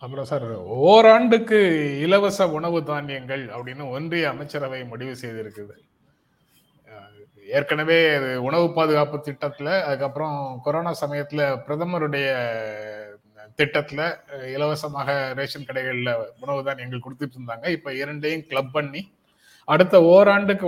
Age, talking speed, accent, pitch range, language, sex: 30-49, 95 wpm, native, 125-150 Hz, Tamil, male